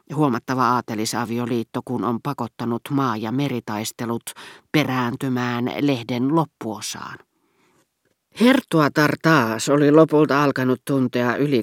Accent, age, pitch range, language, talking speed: native, 40-59, 125-165 Hz, Finnish, 100 wpm